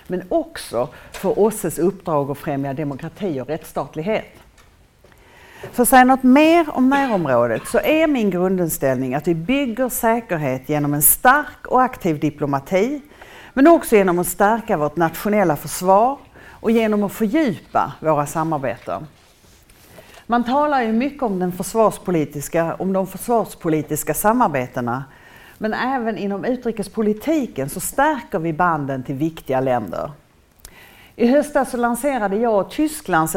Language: English